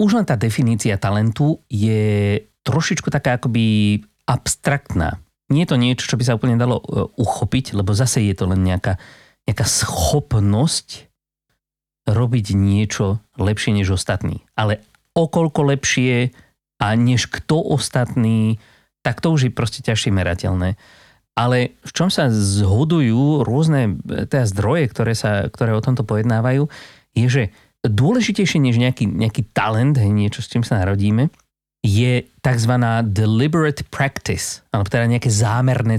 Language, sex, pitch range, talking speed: Slovak, male, 105-130 Hz, 130 wpm